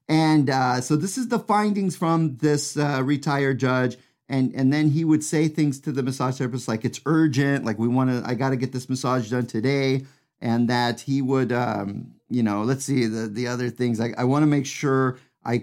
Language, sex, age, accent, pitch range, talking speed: English, male, 40-59, American, 115-140 Hz, 225 wpm